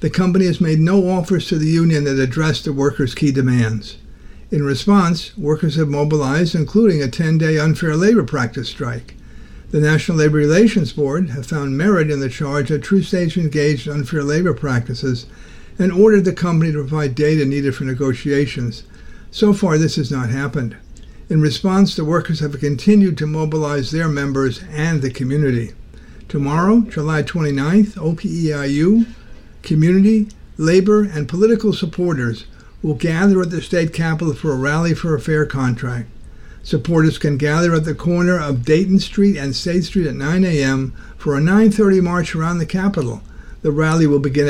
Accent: American